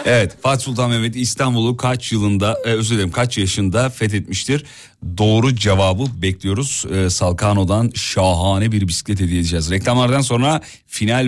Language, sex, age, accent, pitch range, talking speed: Turkish, male, 40-59, native, 105-145 Hz, 135 wpm